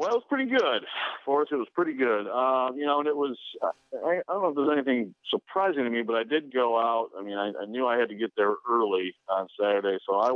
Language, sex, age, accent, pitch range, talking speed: English, male, 50-69, American, 100-120 Hz, 270 wpm